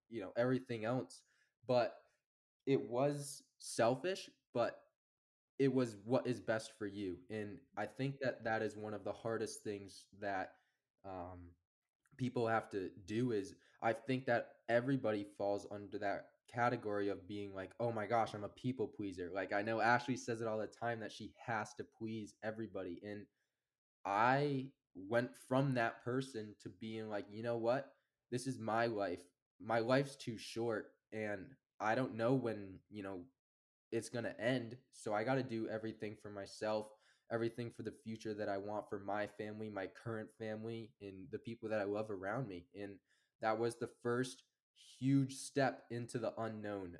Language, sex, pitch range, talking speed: English, male, 105-120 Hz, 175 wpm